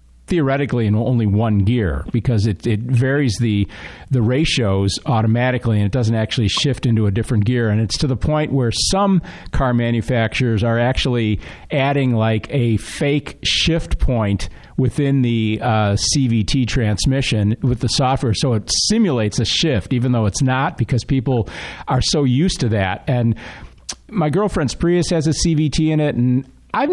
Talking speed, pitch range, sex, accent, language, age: 165 wpm, 110-140 Hz, male, American, English, 50-69